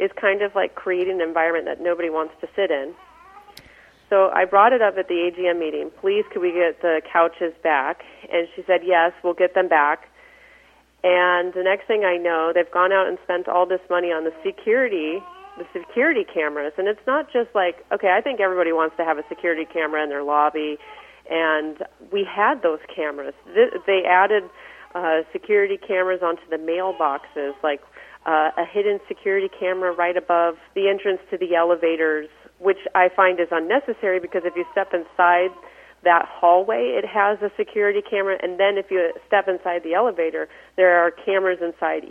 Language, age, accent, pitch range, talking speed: English, 40-59, American, 170-220 Hz, 185 wpm